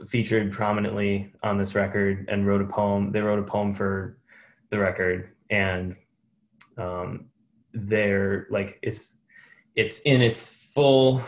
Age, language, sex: 10-29, English, male